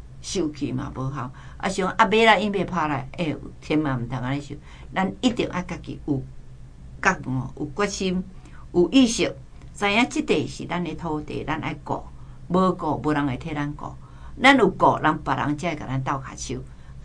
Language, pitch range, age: Chinese, 135-165 Hz, 60-79